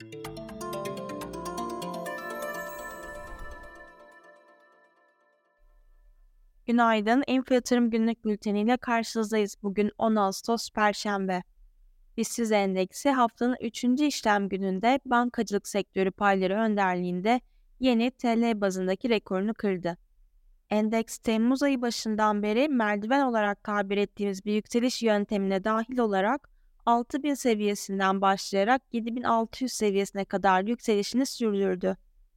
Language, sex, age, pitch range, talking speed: Turkish, female, 10-29, 195-240 Hz, 85 wpm